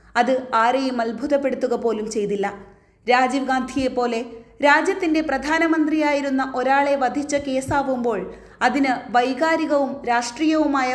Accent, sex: native, female